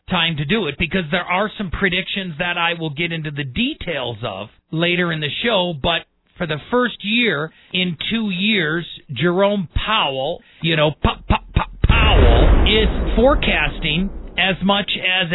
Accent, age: American, 40-59